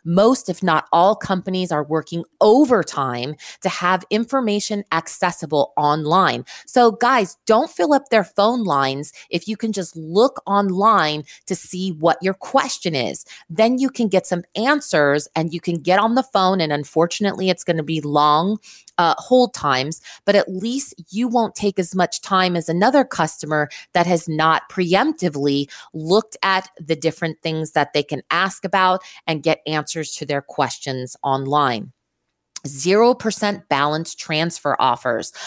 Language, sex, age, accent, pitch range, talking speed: English, female, 30-49, American, 160-220 Hz, 160 wpm